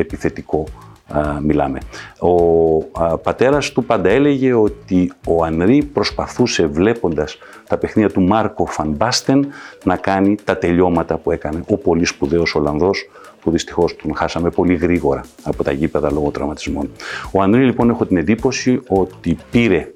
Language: Greek